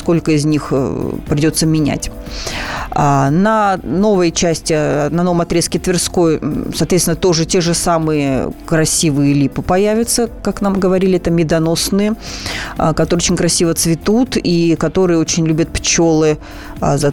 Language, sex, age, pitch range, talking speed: Russian, female, 30-49, 155-195 Hz, 125 wpm